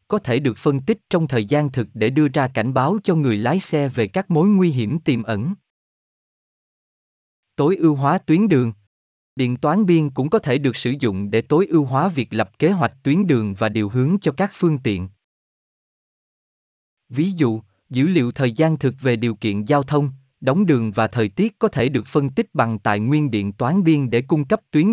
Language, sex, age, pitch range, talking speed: Vietnamese, male, 20-39, 110-160 Hz, 210 wpm